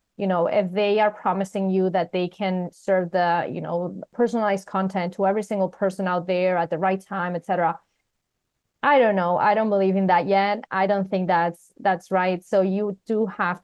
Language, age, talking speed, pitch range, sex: English, 30-49, 205 wpm, 175-210 Hz, female